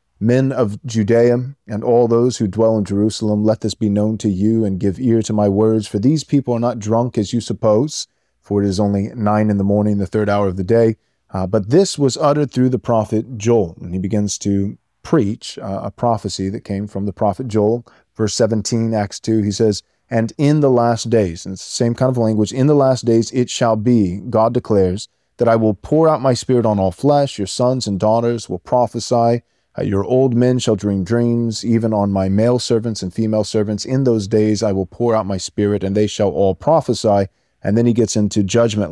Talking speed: 225 wpm